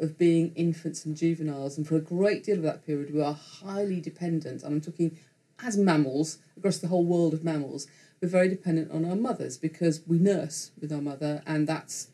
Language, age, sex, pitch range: English, 40-59, female, 155-180 Hz